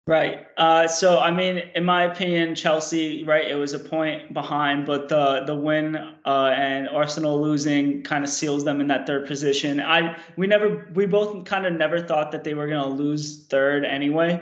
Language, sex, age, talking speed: English, male, 20-39, 195 wpm